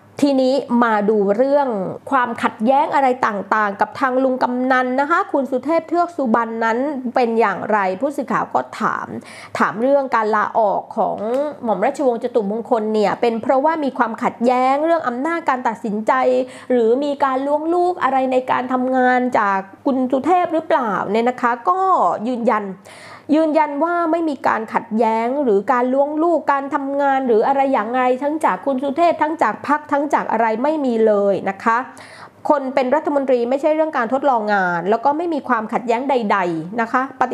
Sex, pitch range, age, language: female, 225-285 Hz, 20-39, Thai